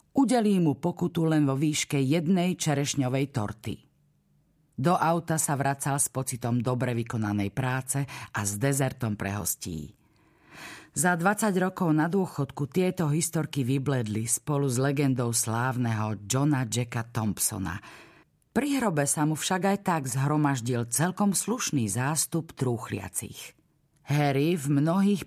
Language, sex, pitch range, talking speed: Slovak, female, 120-160 Hz, 125 wpm